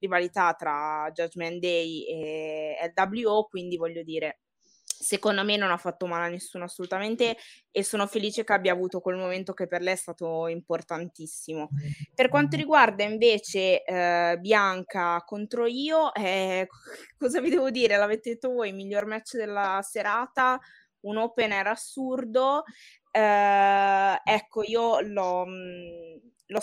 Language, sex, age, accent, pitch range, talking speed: Italian, female, 20-39, native, 175-215 Hz, 140 wpm